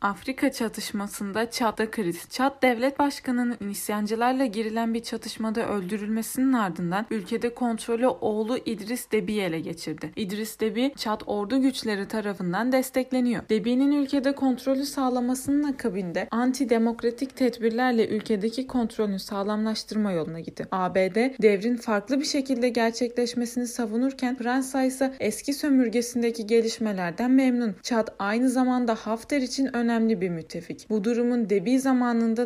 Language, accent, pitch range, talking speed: Turkish, native, 210-255 Hz, 120 wpm